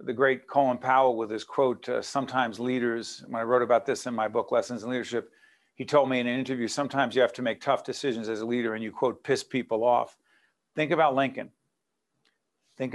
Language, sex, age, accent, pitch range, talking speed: English, male, 50-69, American, 120-140 Hz, 220 wpm